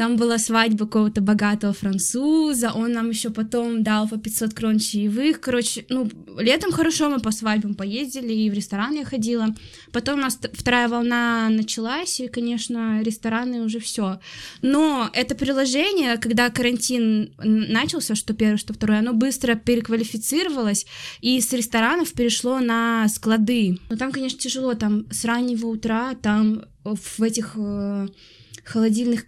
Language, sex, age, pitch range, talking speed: Russian, female, 20-39, 210-240 Hz, 145 wpm